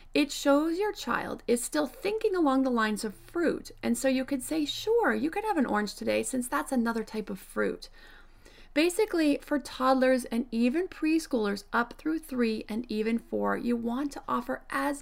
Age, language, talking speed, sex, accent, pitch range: 30-49, English, 190 wpm, female, American, 220-285 Hz